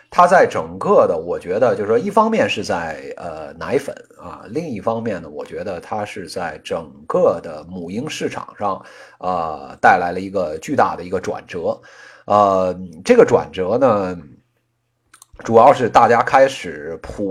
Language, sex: Chinese, male